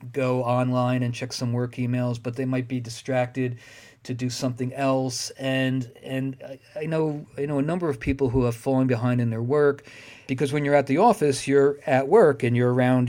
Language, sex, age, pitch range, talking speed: English, male, 40-59, 120-145 Hz, 210 wpm